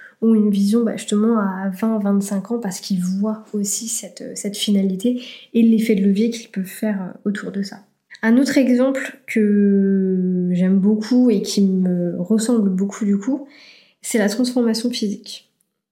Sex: female